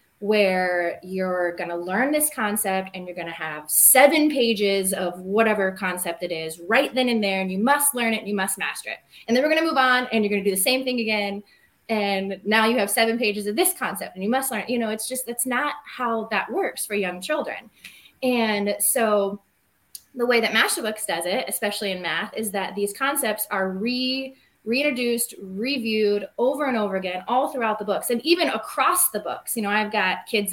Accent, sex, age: American, female, 20-39